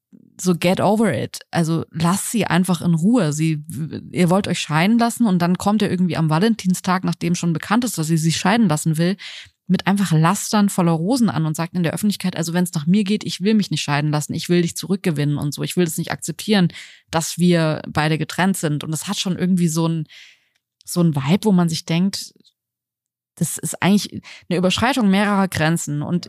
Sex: female